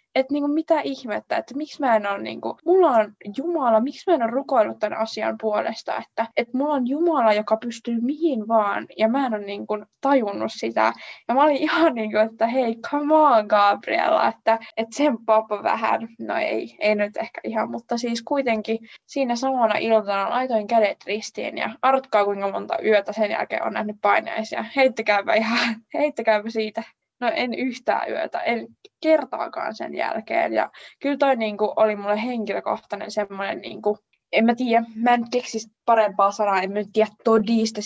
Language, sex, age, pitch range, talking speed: Finnish, female, 20-39, 210-260 Hz, 175 wpm